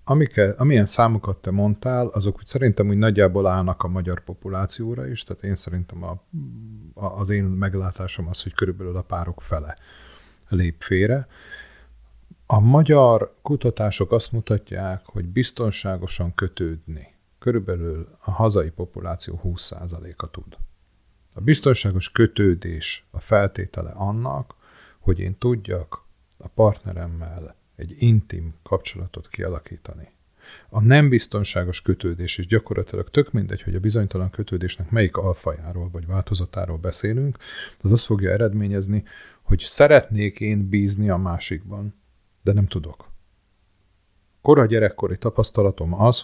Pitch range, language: 90-110 Hz, Hungarian